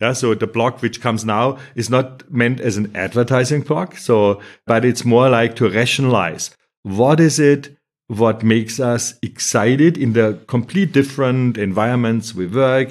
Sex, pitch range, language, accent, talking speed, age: male, 105-130 Hz, German, German, 165 wpm, 50-69